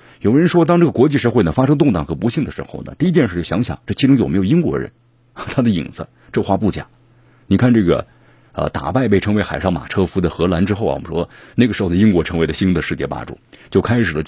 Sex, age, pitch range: male, 50-69, 90-120 Hz